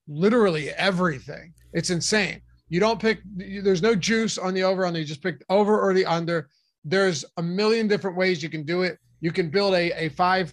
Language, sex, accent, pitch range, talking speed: English, male, American, 160-195 Hz, 205 wpm